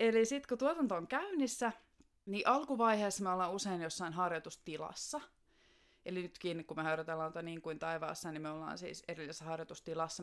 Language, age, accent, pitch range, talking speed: Finnish, 20-39, native, 170-220 Hz, 165 wpm